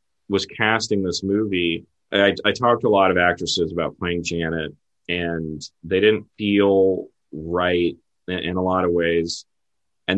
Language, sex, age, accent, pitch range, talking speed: English, male, 30-49, American, 85-105 Hz, 160 wpm